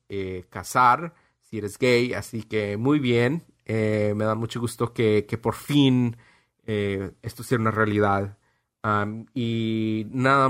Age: 30-49